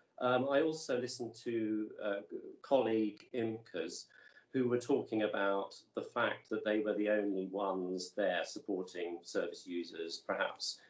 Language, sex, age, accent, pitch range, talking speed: English, male, 40-59, British, 95-115 Hz, 140 wpm